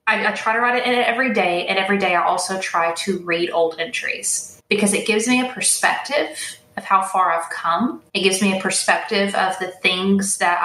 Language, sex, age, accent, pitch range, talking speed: English, female, 20-39, American, 185-220 Hz, 225 wpm